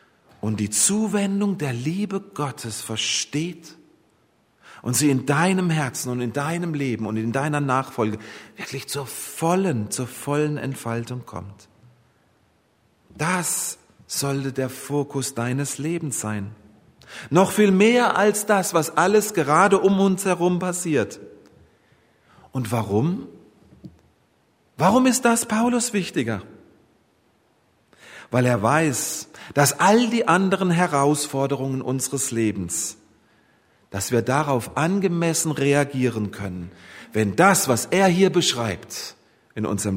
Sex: male